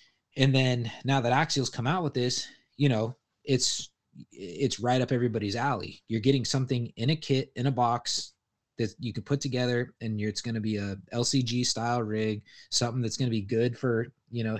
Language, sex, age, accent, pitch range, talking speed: English, male, 20-39, American, 110-130 Hz, 200 wpm